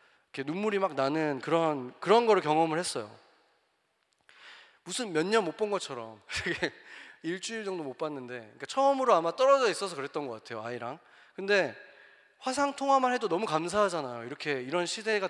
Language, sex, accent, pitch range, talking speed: English, male, Korean, 155-235 Hz, 135 wpm